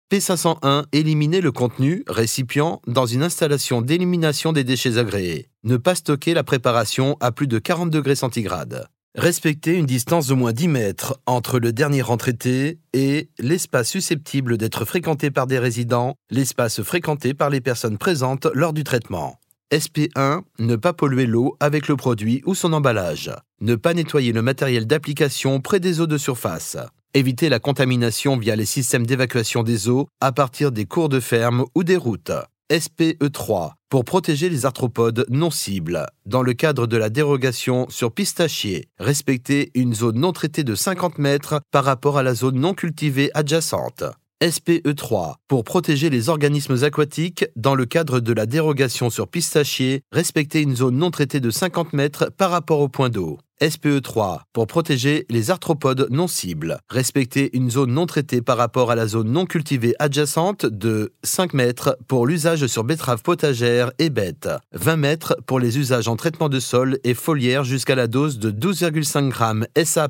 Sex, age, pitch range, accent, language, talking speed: male, 30-49, 125-155 Hz, French, French, 170 wpm